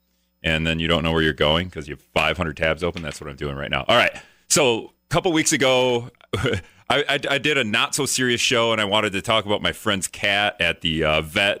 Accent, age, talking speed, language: American, 30-49, 245 wpm, English